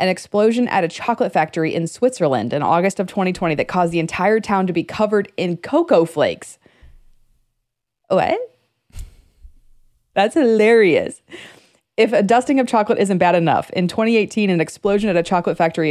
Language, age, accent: English, 20-39, American